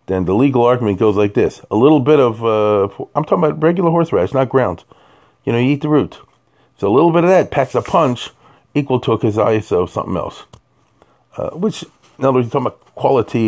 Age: 40-59